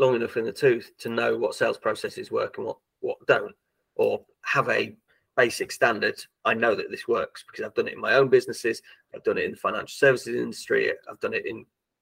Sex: male